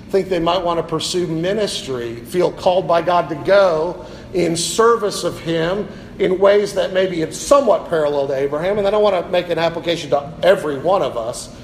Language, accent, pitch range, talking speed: English, American, 155-190 Hz, 200 wpm